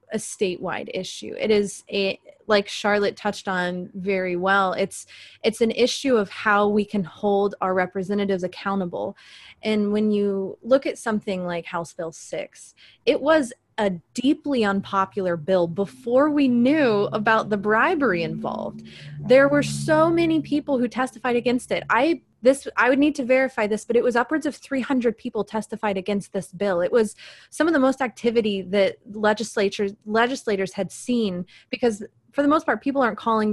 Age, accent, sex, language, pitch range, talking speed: 20-39, American, female, English, 195-250 Hz, 170 wpm